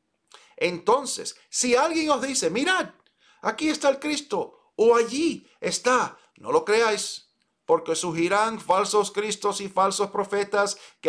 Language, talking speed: Spanish, 130 wpm